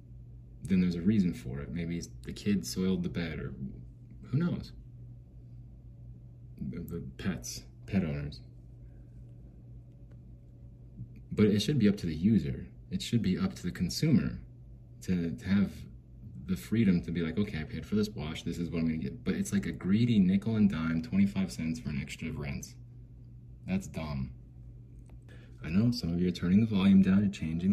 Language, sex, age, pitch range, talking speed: English, male, 30-49, 65-105 Hz, 180 wpm